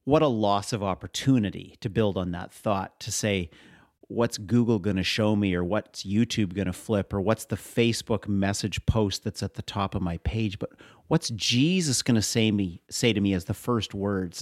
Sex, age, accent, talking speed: male, 40-59, American, 210 wpm